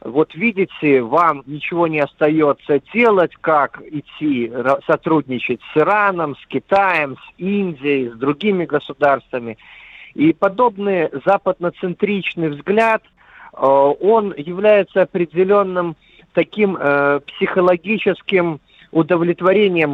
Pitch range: 140-190 Hz